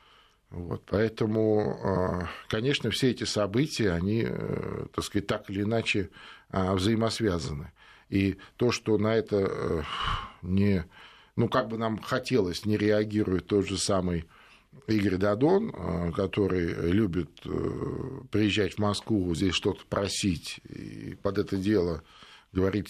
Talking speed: 115 wpm